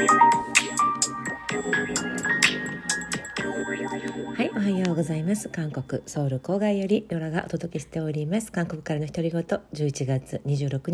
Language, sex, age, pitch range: Japanese, female, 40-59, 130-170 Hz